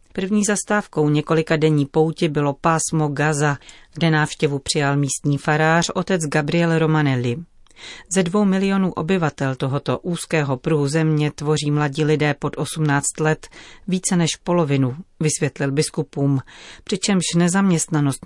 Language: Czech